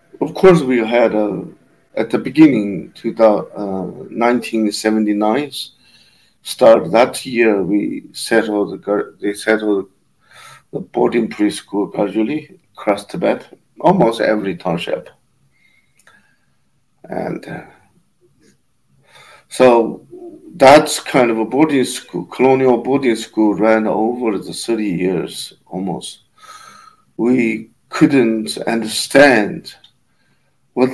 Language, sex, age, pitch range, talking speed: English, male, 50-69, 110-155 Hz, 95 wpm